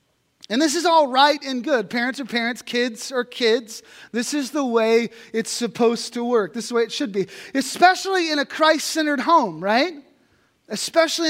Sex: male